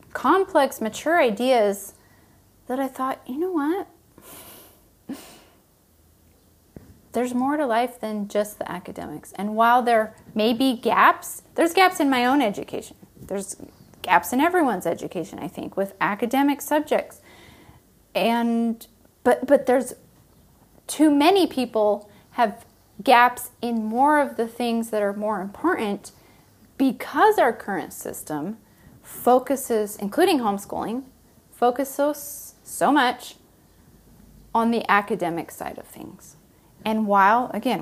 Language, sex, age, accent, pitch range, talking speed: English, female, 30-49, American, 210-275 Hz, 120 wpm